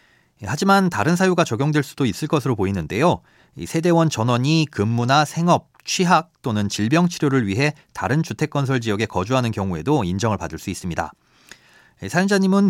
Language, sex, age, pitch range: Korean, male, 40-59, 105-155 Hz